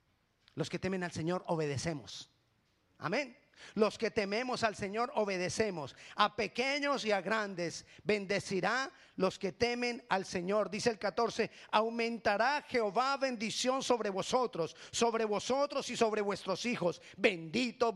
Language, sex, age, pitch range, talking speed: Spanish, male, 40-59, 185-250 Hz, 130 wpm